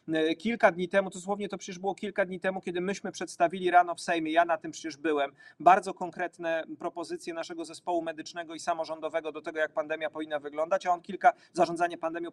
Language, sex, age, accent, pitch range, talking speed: Polish, male, 40-59, native, 165-210 Hz, 200 wpm